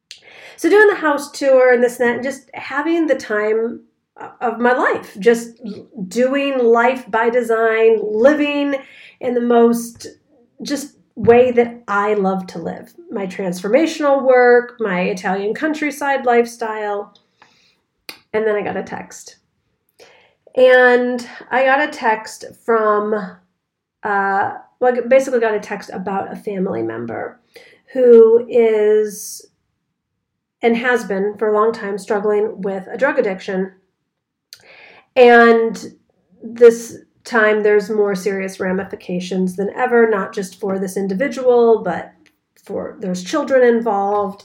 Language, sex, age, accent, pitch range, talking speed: English, female, 40-59, American, 205-250 Hz, 130 wpm